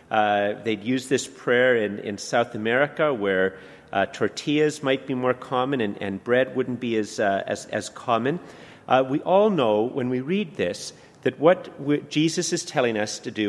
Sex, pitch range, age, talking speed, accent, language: male, 115-150 Hz, 40-59, 185 wpm, American, English